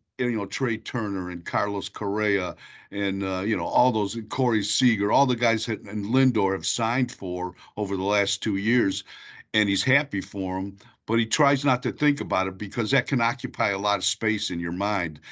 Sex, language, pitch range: male, English, 105-125 Hz